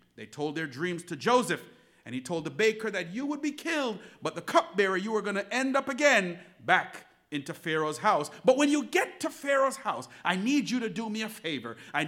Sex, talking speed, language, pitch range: male, 230 wpm, English, 145-240 Hz